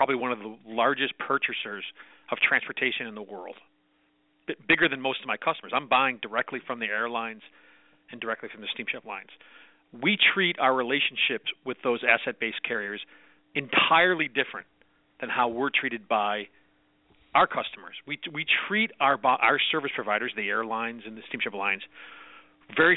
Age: 40-59